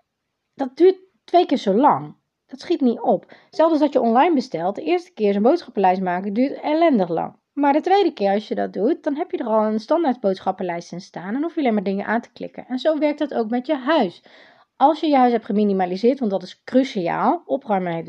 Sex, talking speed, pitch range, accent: female, 240 wpm, 205-280 Hz, Dutch